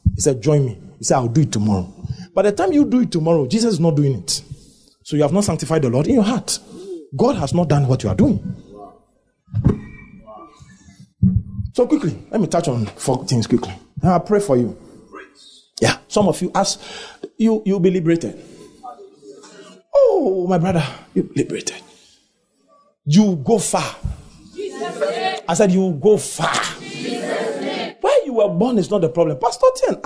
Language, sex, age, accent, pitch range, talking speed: English, male, 40-59, Nigerian, 150-215 Hz, 170 wpm